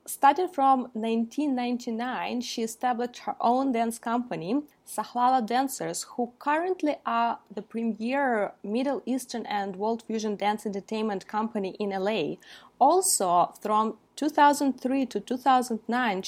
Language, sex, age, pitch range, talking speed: English, female, 20-39, 200-250 Hz, 115 wpm